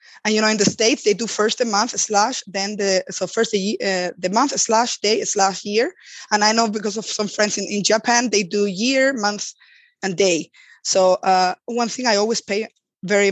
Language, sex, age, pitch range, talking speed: English, female, 20-39, 190-220 Hz, 215 wpm